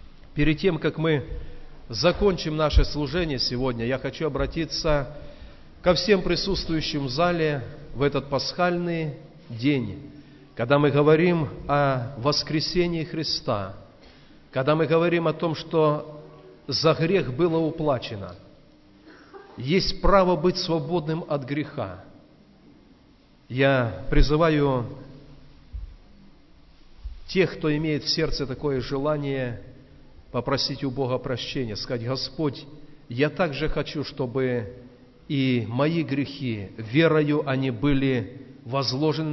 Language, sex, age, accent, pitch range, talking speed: Russian, male, 40-59, native, 125-155 Hz, 105 wpm